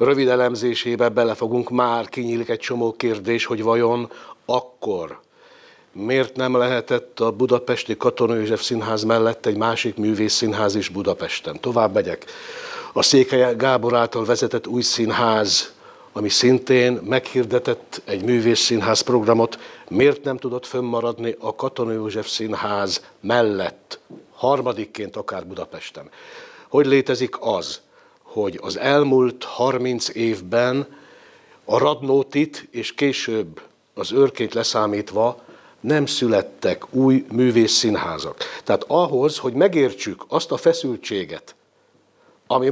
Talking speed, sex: 110 wpm, male